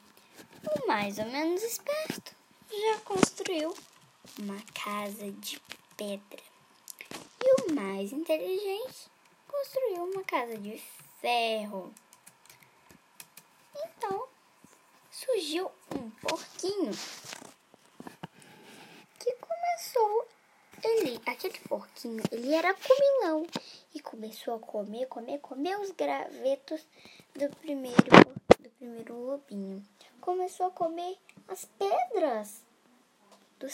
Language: Portuguese